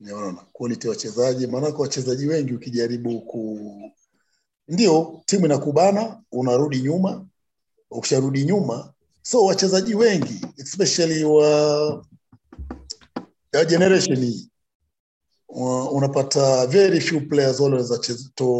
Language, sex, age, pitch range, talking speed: Swahili, male, 50-69, 130-170 Hz, 95 wpm